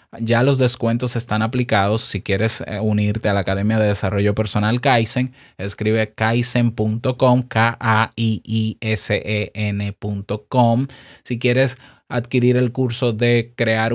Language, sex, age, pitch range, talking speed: Spanish, male, 20-39, 110-140 Hz, 130 wpm